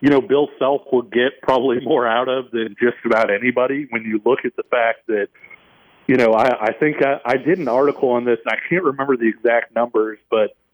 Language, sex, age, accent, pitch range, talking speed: English, male, 40-59, American, 115-150 Hz, 230 wpm